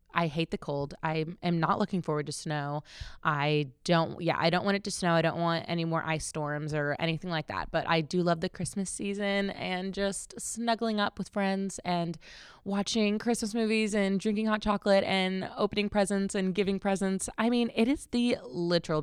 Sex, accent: female, American